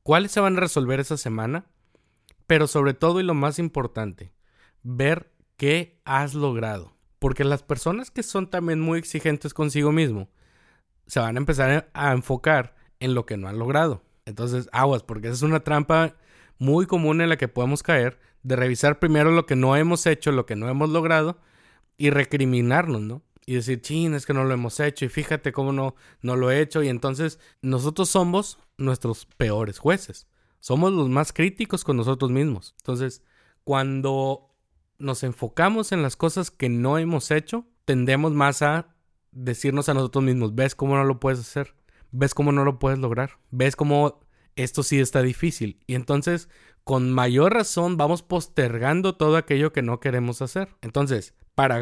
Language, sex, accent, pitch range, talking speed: Spanish, male, Mexican, 125-160 Hz, 175 wpm